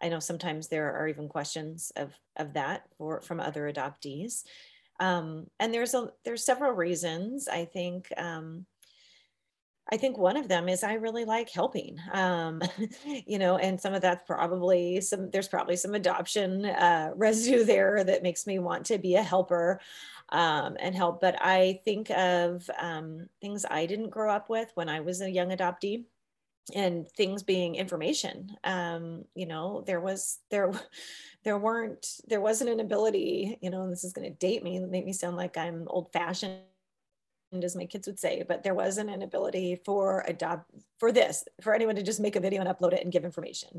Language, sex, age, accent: English, female, 30-49, American